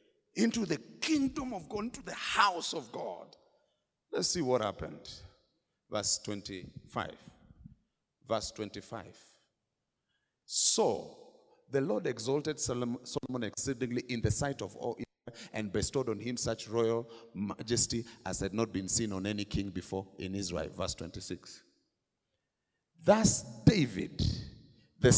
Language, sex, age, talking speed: English, male, 50-69, 125 wpm